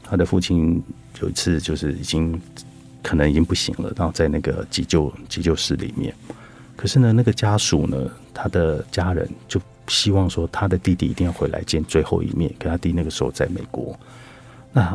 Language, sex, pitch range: Chinese, male, 85-120 Hz